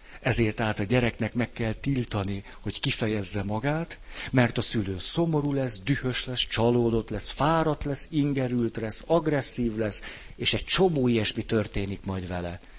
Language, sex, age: Hungarian, male, 60-79